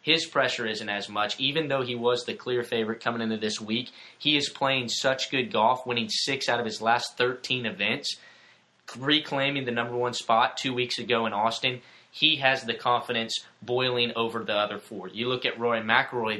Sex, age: male, 20-39